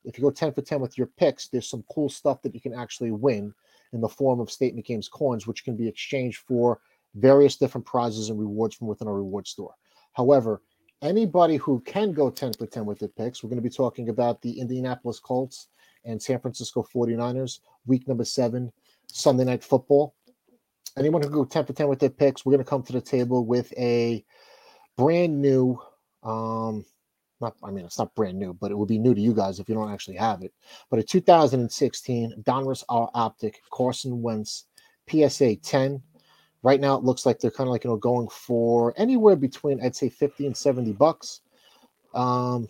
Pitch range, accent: 115-140 Hz, American